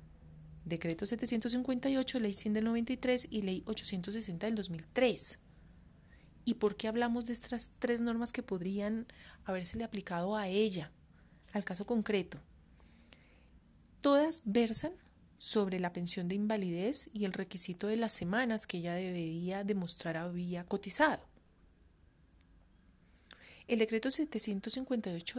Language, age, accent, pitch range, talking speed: Spanish, 30-49, Colombian, 175-230 Hz, 120 wpm